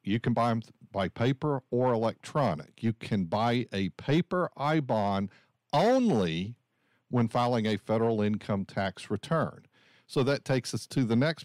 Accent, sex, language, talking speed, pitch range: American, male, English, 155 wpm, 110-135 Hz